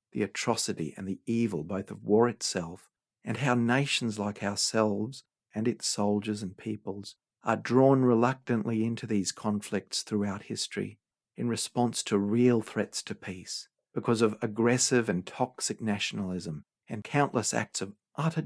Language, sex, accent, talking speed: English, male, Australian, 145 wpm